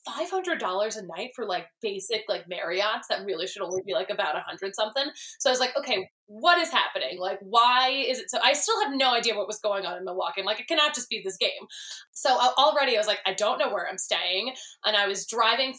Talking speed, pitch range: 245 wpm, 200-280 Hz